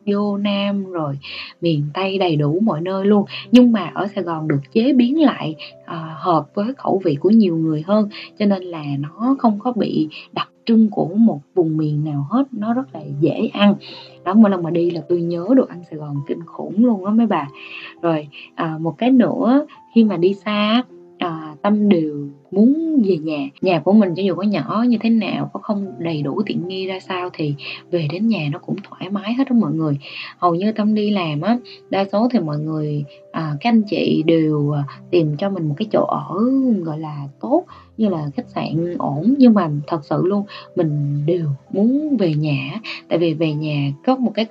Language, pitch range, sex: Vietnamese, 155-225 Hz, female